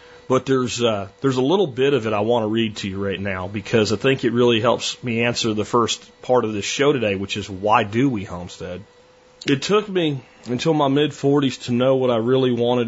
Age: 30-49